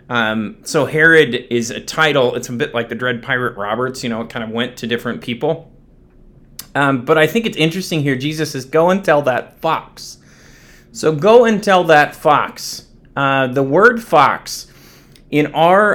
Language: English